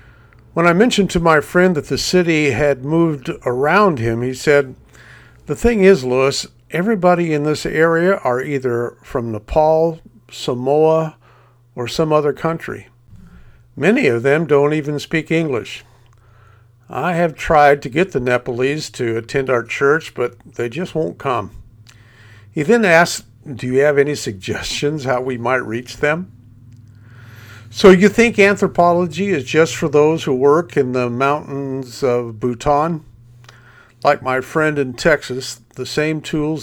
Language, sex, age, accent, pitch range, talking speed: English, male, 50-69, American, 120-160 Hz, 150 wpm